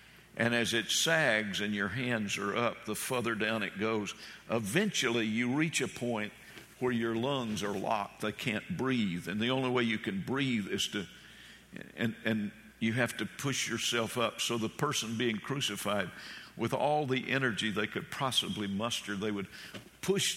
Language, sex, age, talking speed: English, male, 50-69, 170 wpm